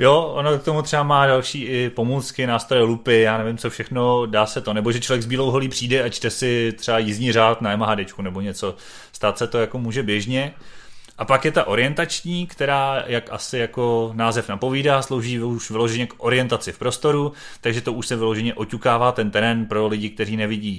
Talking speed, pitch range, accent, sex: 205 wpm, 105-120 Hz, native, male